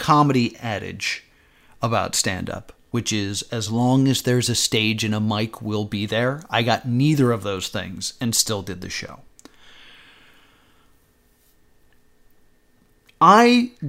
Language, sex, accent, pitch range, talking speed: English, male, American, 110-145 Hz, 130 wpm